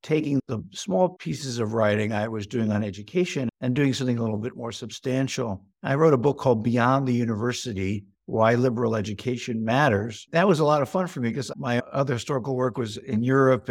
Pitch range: 120-150 Hz